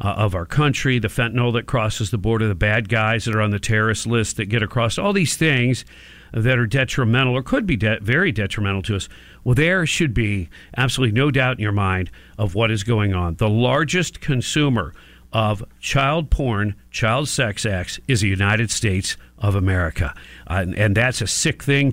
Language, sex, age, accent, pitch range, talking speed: English, male, 50-69, American, 95-140 Hz, 195 wpm